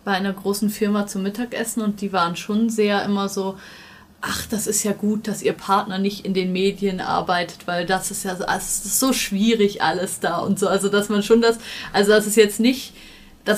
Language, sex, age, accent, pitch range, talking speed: German, female, 20-39, German, 185-210 Hz, 210 wpm